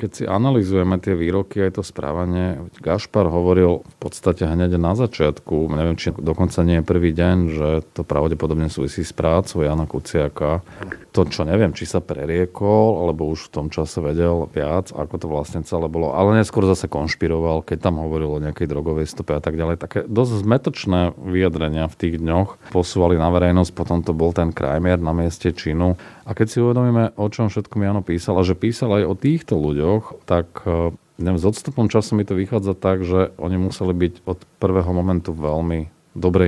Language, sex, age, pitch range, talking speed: Slovak, male, 40-59, 80-95 Hz, 185 wpm